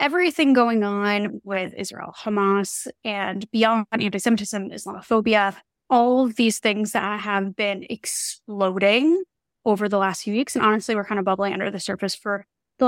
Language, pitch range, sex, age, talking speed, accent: English, 200-235 Hz, female, 20-39, 160 wpm, American